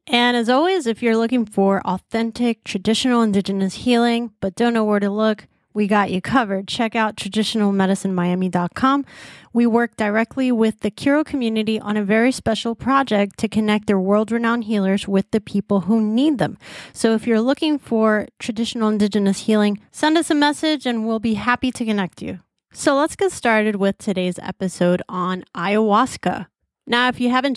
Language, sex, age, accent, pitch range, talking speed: English, female, 30-49, American, 200-235 Hz, 175 wpm